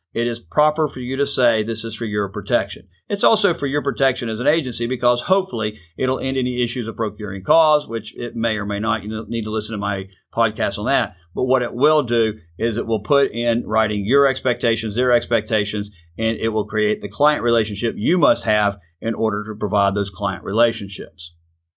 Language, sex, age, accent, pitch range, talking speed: English, male, 50-69, American, 110-145 Hz, 210 wpm